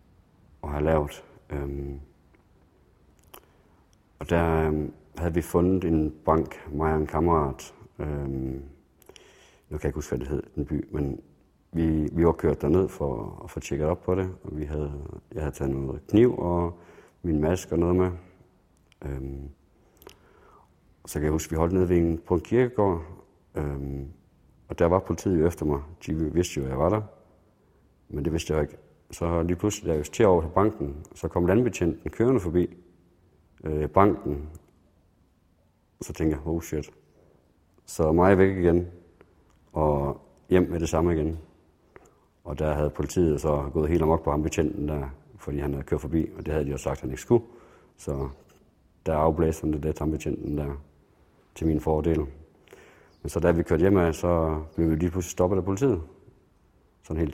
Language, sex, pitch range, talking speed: Danish, male, 75-90 Hz, 175 wpm